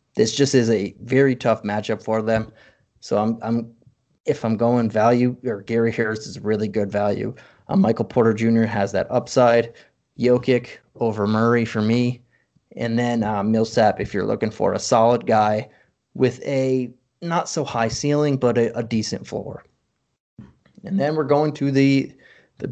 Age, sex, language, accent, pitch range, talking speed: 30-49, male, English, American, 110-130 Hz, 170 wpm